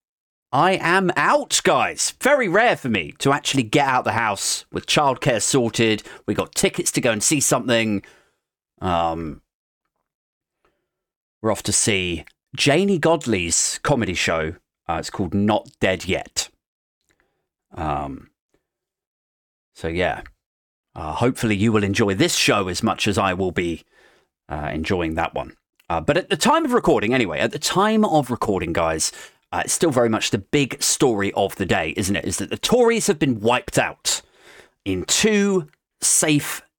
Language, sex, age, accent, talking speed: English, male, 30-49, British, 160 wpm